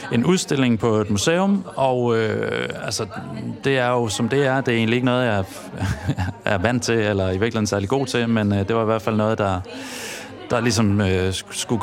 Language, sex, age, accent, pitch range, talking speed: Danish, male, 30-49, native, 105-125 Hz, 215 wpm